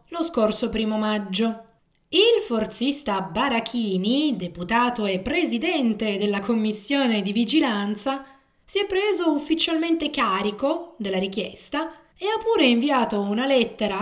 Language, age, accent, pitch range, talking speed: Italian, 20-39, native, 215-280 Hz, 115 wpm